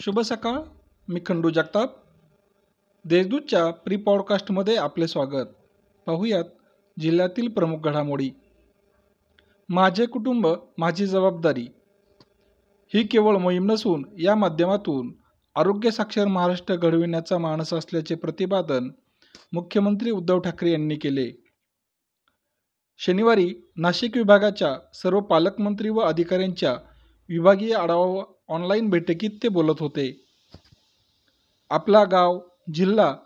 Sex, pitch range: male, 165-205 Hz